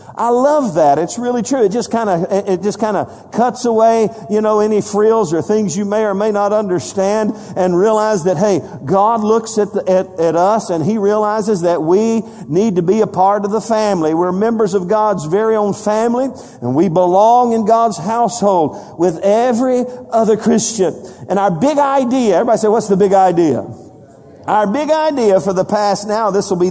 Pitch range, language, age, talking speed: 185-225 Hz, English, 50-69, 200 wpm